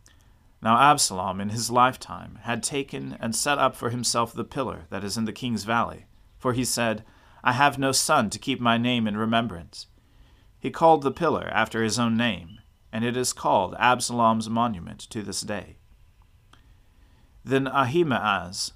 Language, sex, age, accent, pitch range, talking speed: English, male, 40-59, American, 95-130 Hz, 165 wpm